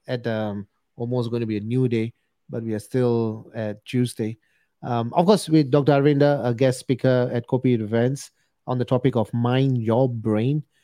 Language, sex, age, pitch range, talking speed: English, male, 30-49, 115-145 Hz, 190 wpm